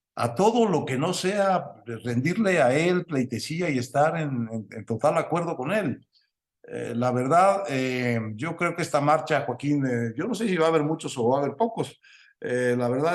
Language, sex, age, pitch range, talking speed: Spanish, male, 60-79, 120-160 Hz, 210 wpm